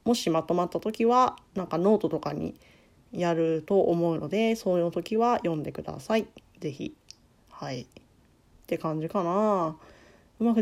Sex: female